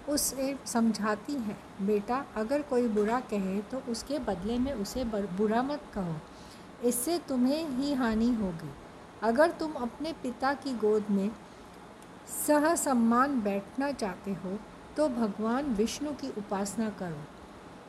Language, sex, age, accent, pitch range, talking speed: Hindi, female, 50-69, native, 210-265 Hz, 130 wpm